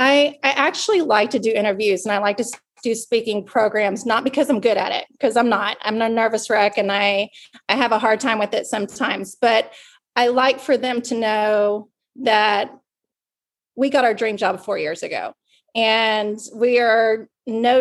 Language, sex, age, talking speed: English, female, 30-49, 190 wpm